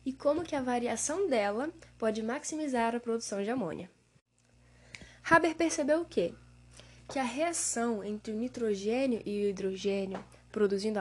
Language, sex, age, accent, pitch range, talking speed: Portuguese, female, 10-29, Brazilian, 195-280 Hz, 140 wpm